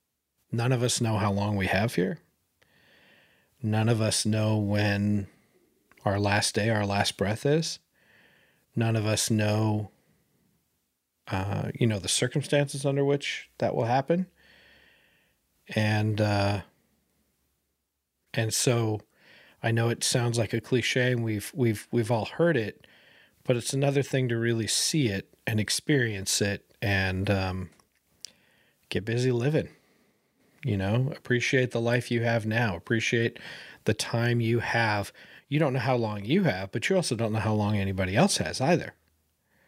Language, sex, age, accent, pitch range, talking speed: English, male, 40-59, American, 100-125 Hz, 150 wpm